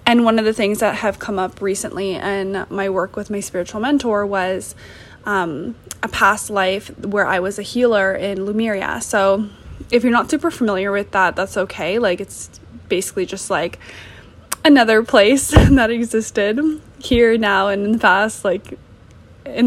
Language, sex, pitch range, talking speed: English, female, 195-225 Hz, 170 wpm